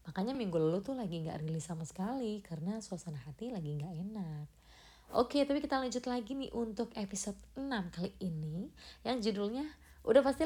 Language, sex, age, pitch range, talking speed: Indonesian, female, 20-39, 175-250 Hz, 180 wpm